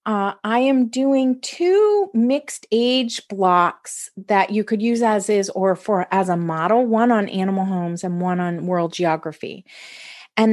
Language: English